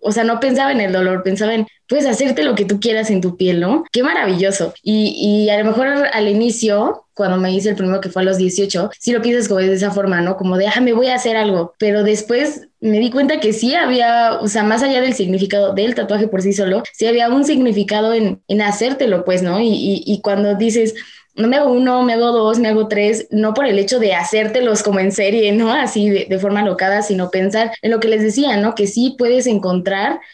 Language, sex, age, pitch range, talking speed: Spanish, female, 20-39, 195-230 Hz, 245 wpm